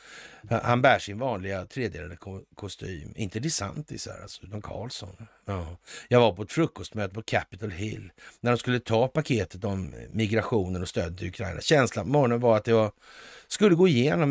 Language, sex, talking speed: Swedish, male, 175 wpm